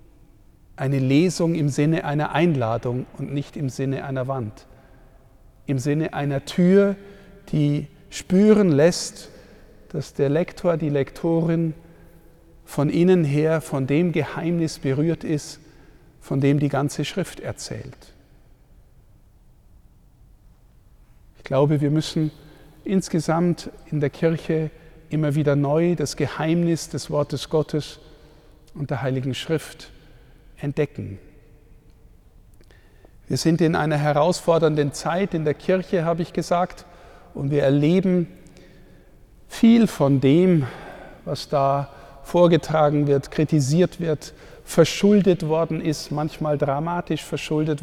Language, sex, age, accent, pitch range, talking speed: German, male, 50-69, German, 145-170 Hz, 110 wpm